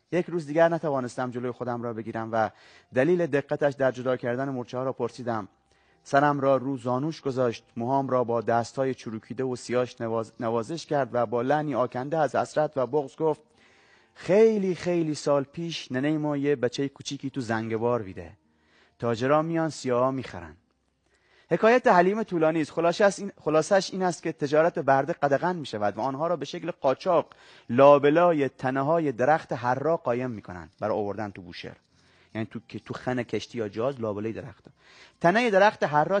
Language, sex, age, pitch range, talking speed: Persian, male, 30-49, 120-155 Hz, 170 wpm